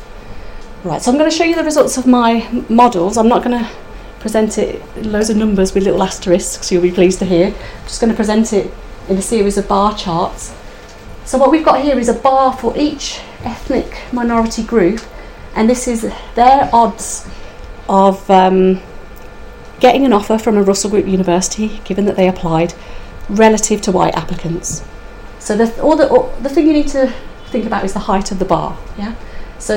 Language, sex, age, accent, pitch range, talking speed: English, female, 40-59, British, 175-230 Hz, 200 wpm